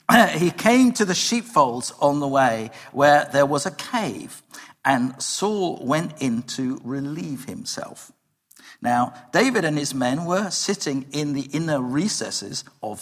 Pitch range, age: 135-210 Hz, 50-69